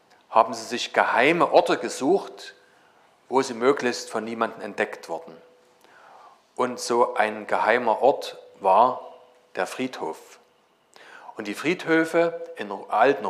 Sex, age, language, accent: male, 40-59, German, German